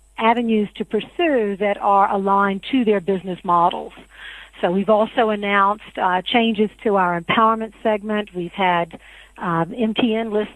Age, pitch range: 50-69, 195-220 Hz